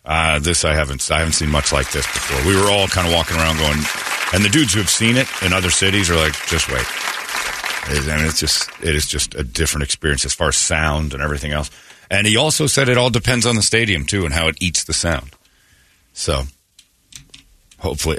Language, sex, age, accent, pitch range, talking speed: English, male, 40-59, American, 75-100 Hz, 225 wpm